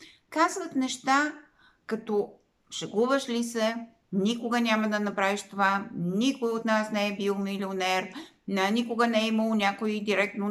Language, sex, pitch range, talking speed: Bulgarian, female, 195-245 Hz, 145 wpm